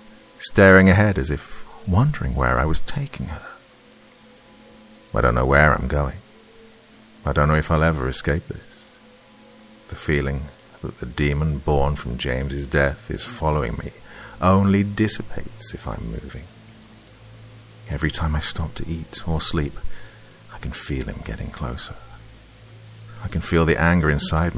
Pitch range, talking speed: 70-100 Hz, 150 wpm